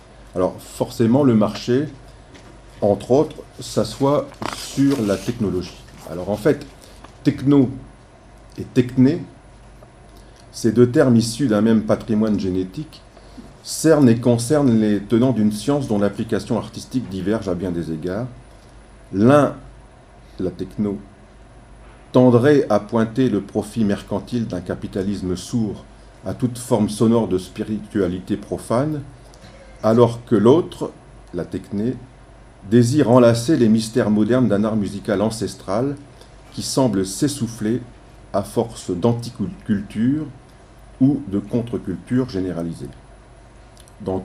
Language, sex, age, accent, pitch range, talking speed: French, male, 50-69, French, 100-125 Hz, 115 wpm